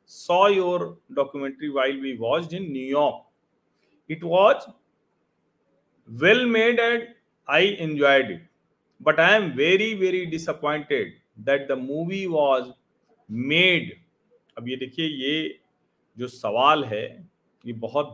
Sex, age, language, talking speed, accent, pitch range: male, 40-59, Hindi, 120 wpm, native, 140-210 Hz